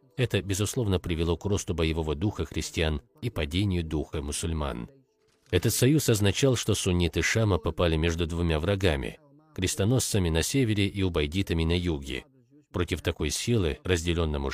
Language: Russian